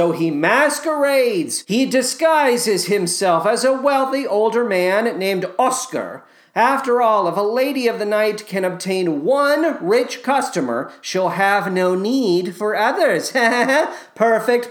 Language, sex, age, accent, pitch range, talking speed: English, male, 40-59, American, 170-245 Hz, 135 wpm